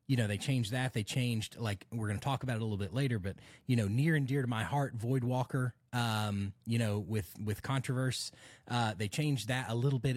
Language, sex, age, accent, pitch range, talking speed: English, male, 30-49, American, 105-130 Hz, 250 wpm